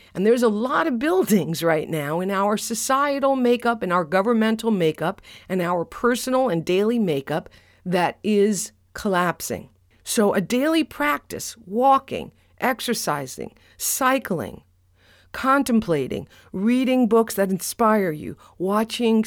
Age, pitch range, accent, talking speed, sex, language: 50-69, 160-225 Hz, American, 120 wpm, female, English